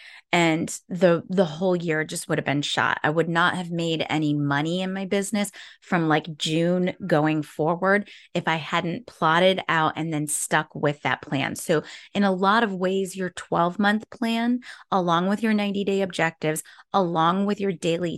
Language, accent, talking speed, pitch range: English, American, 180 wpm, 165-200 Hz